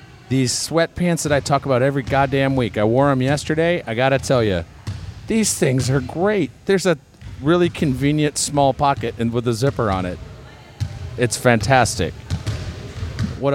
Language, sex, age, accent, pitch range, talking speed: English, male, 40-59, American, 110-150 Hz, 160 wpm